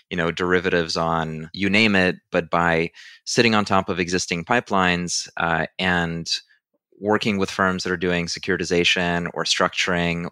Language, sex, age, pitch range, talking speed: English, male, 20-39, 90-105 Hz, 150 wpm